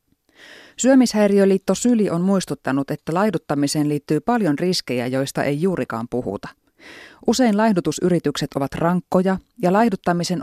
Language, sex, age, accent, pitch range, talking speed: Finnish, female, 30-49, native, 140-195 Hz, 110 wpm